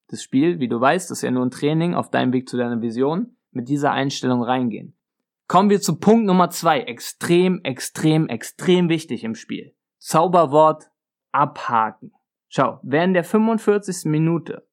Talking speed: 165 wpm